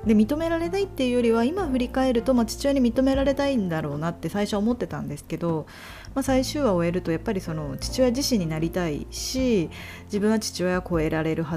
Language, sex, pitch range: Japanese, female, 165-240 Hz